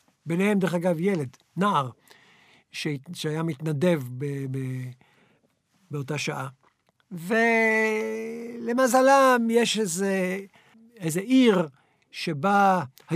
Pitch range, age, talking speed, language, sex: 170-230 Hz, 60-79, 80 wpm, Hebrew, male